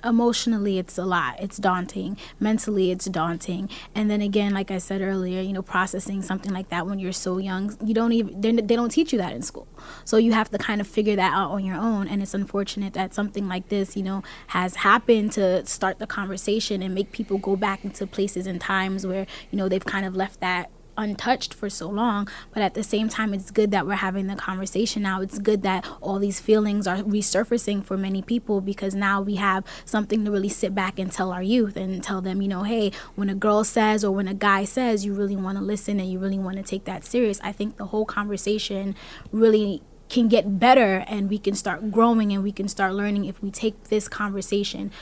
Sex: female